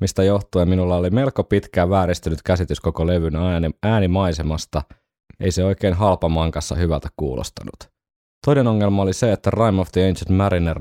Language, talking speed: Finnish, 150 wpm